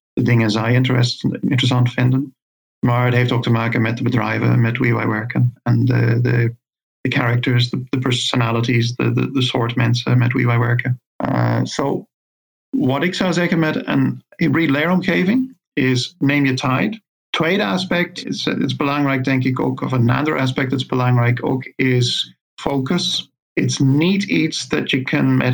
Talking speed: 170 wpm